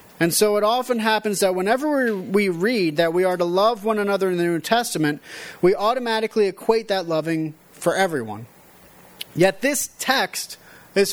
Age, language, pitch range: 30-49, English, 180-225 Hz